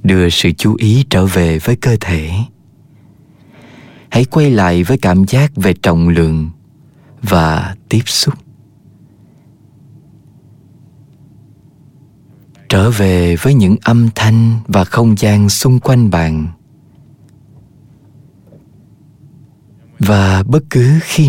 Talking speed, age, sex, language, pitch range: 105 wpm, 20-39, male, Vietnamese, 95-135 Hz